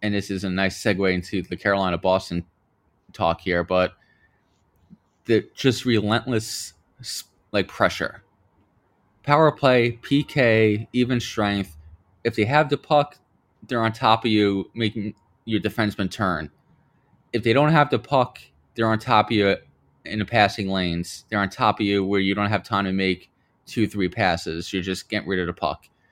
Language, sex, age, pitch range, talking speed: English, male, 20-39, 95-115 Hz, 170 wpm